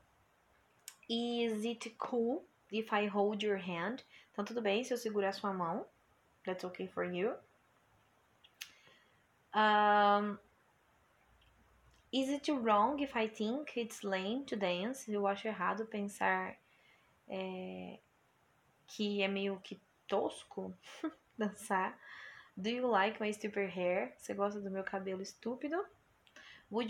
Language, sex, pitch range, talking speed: Portuguese, female, 195-235 Hz, 120 wpm